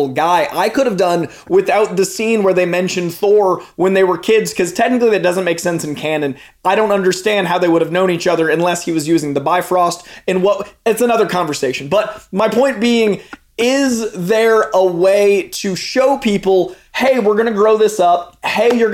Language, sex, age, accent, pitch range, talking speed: English, male, 20-39, American, 170-210 Hz, 205 wpm